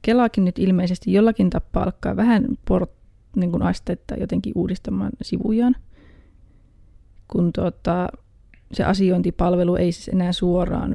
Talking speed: 115 wpm